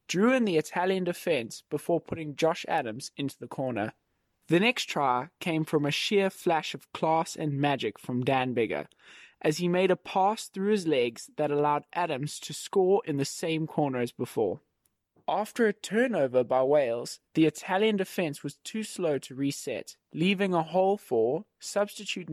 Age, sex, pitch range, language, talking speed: 20-39, male, 145-190 Hz, English, 170 wpm